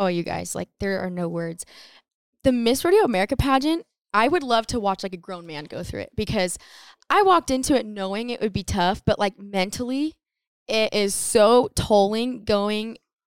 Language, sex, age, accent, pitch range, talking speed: English, female, 10-29, American, 170-210 Hz, 195 wpm